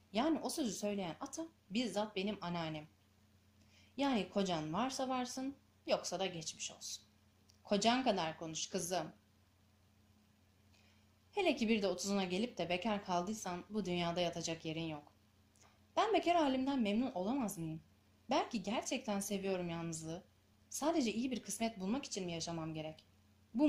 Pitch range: 155-235 Hz